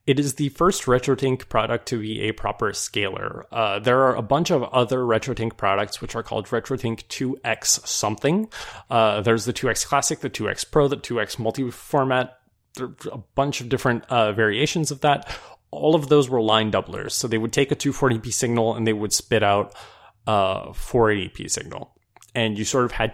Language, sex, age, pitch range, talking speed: English, male, 20-39, 110-140 Hz, 190 wpm